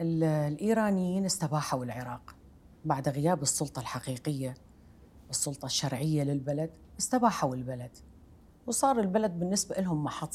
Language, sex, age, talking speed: Arabic, female, 40-59, 100 wpm